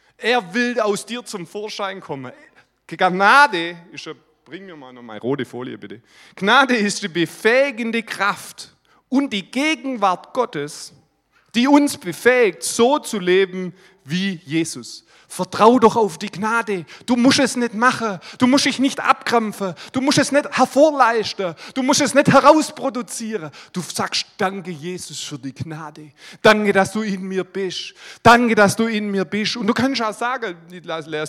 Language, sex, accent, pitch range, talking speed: German, male, German, 185-265 Hz, 160 wpm